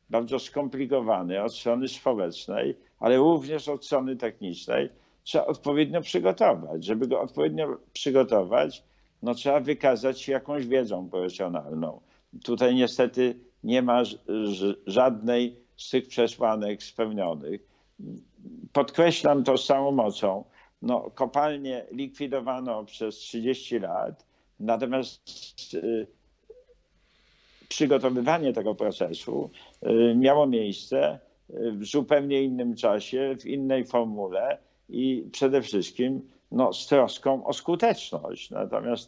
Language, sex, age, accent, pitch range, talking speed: Polish, male, 50-69, native, 105-135 Hz, 105 wpm